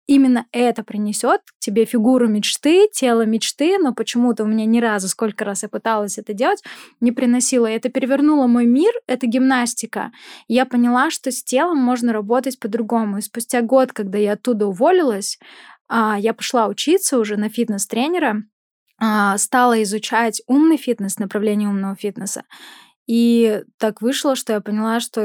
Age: 10-29